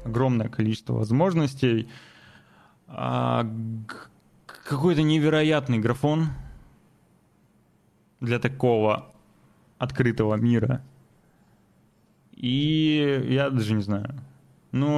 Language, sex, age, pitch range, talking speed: Russian, male, 20-39, 120-170 Hz, 65 wpm